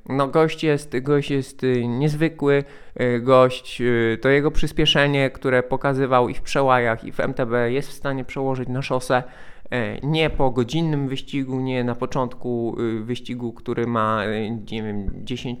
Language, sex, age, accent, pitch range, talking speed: Polish, male, 20-39, native, 115-145 Hz, 140 wpm